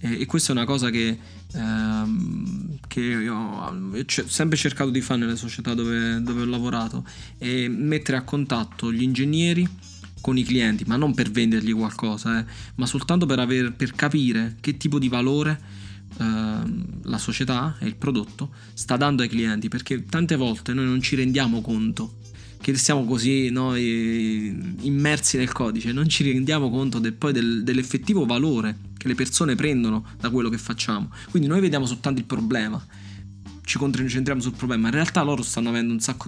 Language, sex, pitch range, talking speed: Italian, male, 115-135 Hz, 175 wpm